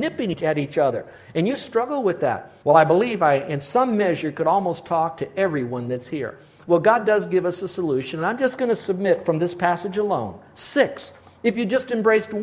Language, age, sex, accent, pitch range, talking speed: English, 50-69, male, American, 150-210 Hz, 215 wpm